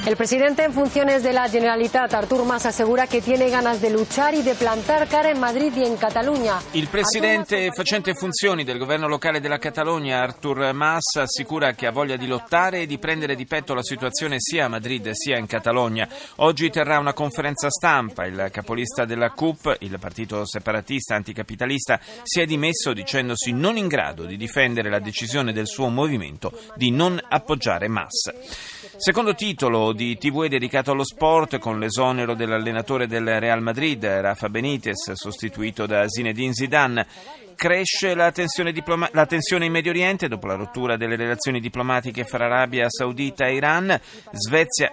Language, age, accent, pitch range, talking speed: Italian, 30-49, native, 120-175 Hz, 160 wpm